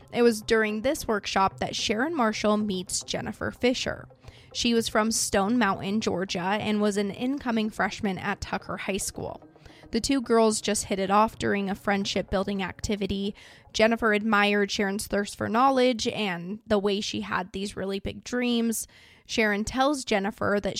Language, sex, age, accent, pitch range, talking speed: English, female, 20-39, American, 195-230 Hz, 165 wpm